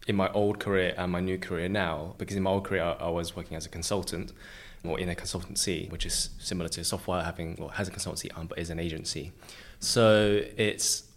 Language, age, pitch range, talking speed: English, 20-39, 85-100 Hz, 235 wpm